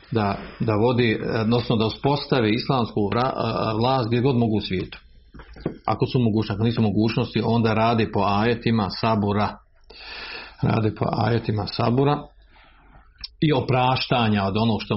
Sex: male